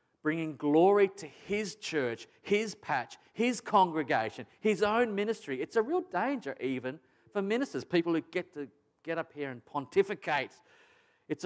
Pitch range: 125-160 Hz